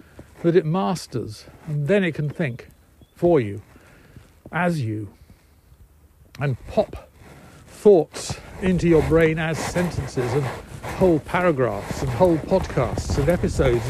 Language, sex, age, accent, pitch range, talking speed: English, male, 60-79, British, 120-175 Hz, 120 wpm